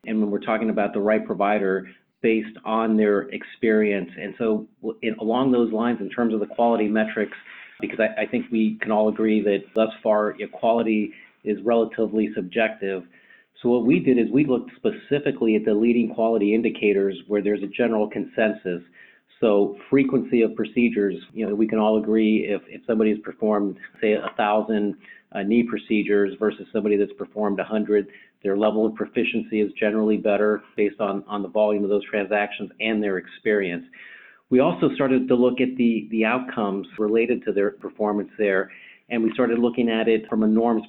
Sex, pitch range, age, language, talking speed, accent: male, 105-115 Hz, 40-59, English, 185 wpm, American